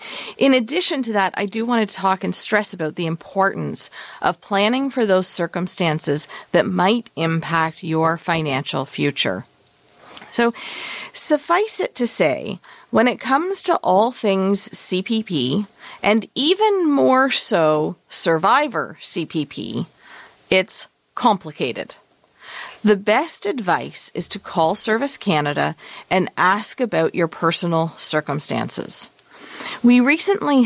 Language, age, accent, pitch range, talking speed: English, 40-59, American, 165-245 Hz, 120 wpm